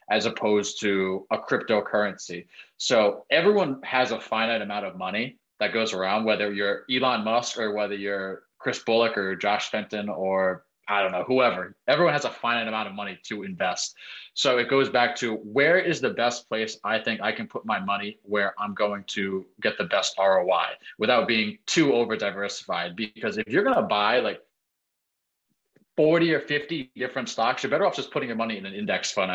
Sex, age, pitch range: male, 20-39, 100-130 Hz